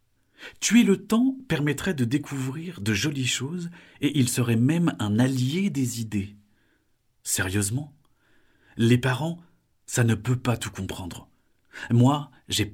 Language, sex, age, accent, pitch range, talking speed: French, male, 40-59, French, 100-145 Hz, 130 wpm